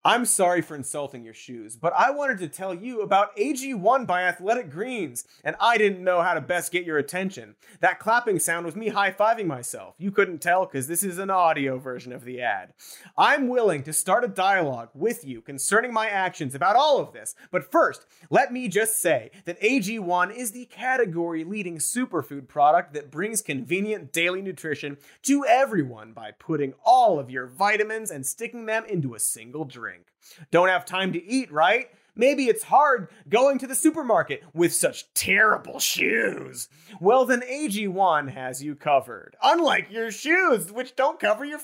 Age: 30-49